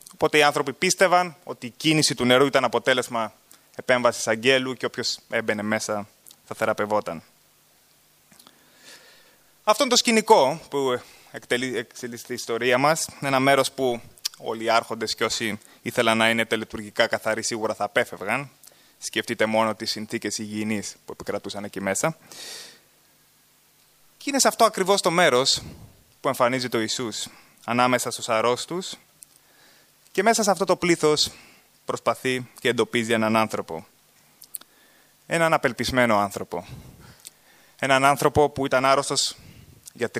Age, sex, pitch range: 20-39, male, 110-150 Hz